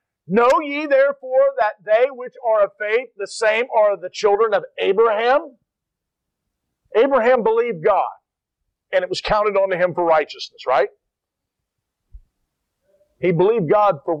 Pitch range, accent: 185-295 Hz, American